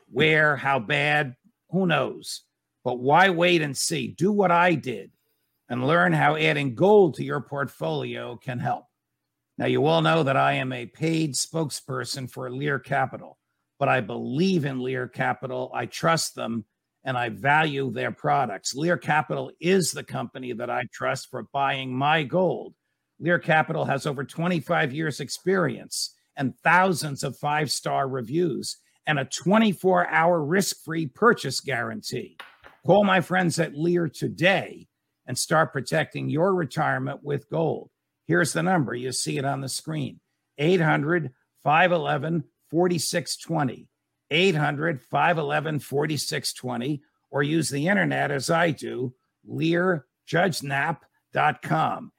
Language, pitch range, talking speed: English, 135-175 Hz, 130 wpm